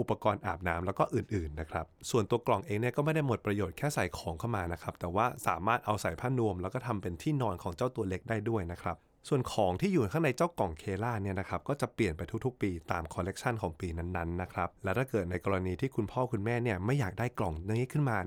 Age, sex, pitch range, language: 20-39, male, 90-120 Hz, Thai